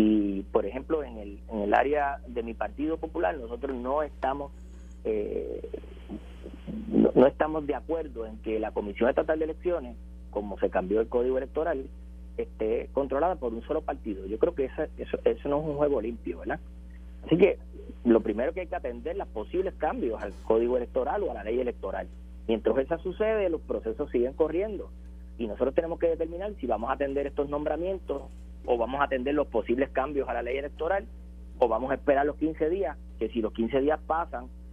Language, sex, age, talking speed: Spanish, male, 40-59, 195 wpm